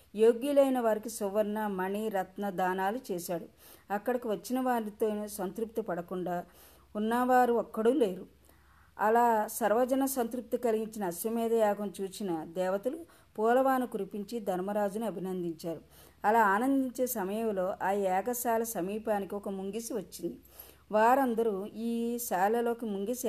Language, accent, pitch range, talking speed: Telugu, native, 195-235 Hz, 100 wpm